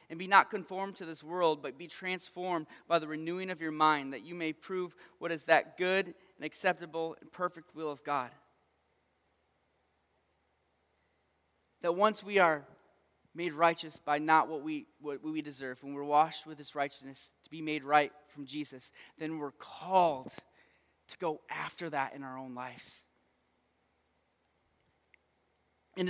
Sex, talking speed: male, 155 wpm